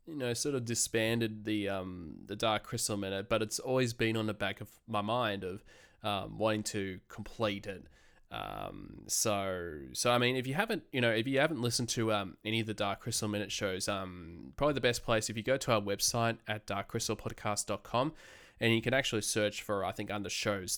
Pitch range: 100-115 Hz